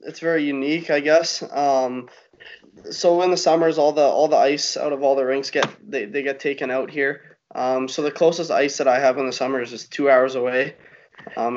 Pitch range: 125-145 Hz